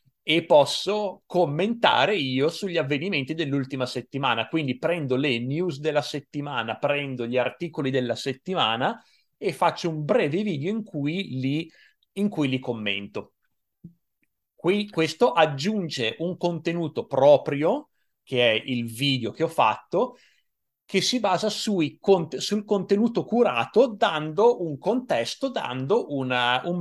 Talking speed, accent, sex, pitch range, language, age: 120 wpm, native, male, 130-170 Hz, Italian, 30-49